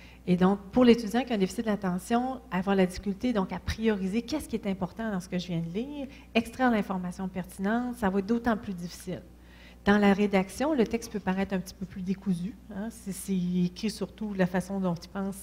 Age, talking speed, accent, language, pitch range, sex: 40-59, 225 wpm, Canadian, French, 180-220 Hz, female